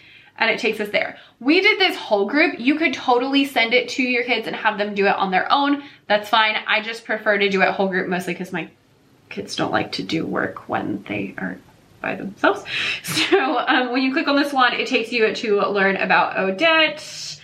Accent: American